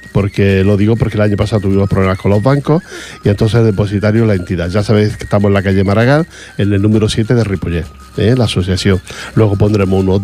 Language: Portuguese